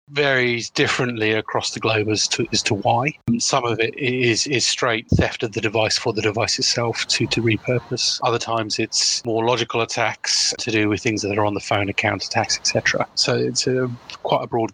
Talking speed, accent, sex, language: 210 wpm, British, male, English